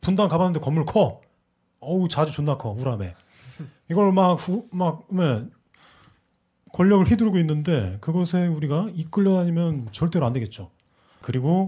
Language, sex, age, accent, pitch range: Korean, male, 30-49, native, 110-170 Hz